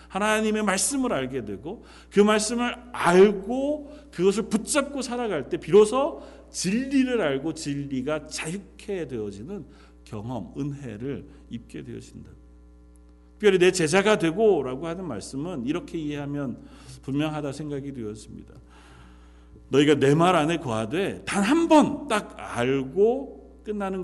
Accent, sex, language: native, male, Korean